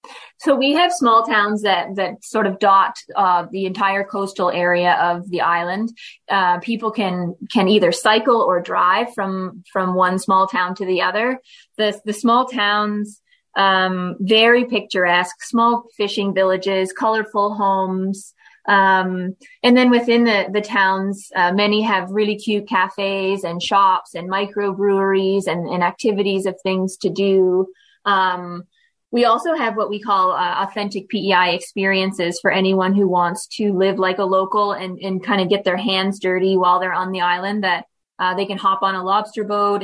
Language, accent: English, American